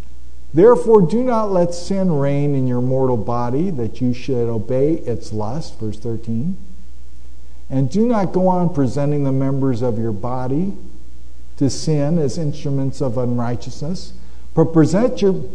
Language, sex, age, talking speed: English, male, 50-69, 145 wpm